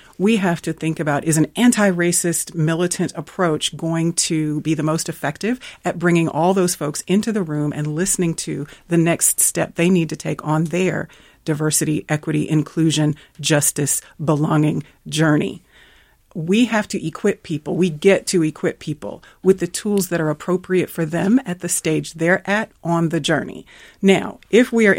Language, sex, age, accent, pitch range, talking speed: English, female, 40-59, American, 155-185 Hz, 175 wpm